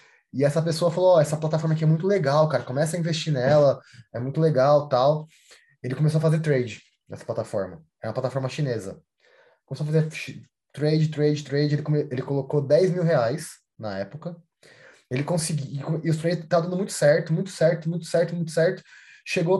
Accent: Brazilian